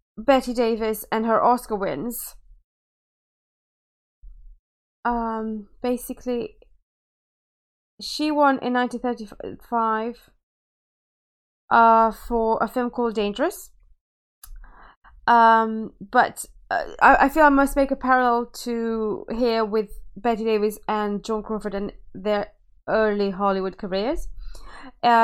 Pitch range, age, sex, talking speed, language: 200-245 Hz, 20-39, female, 100 wpm, English